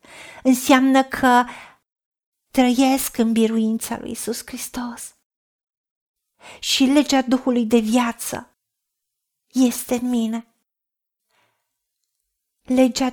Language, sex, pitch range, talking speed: Romanian, female, 225-265 Hz, 80 wpm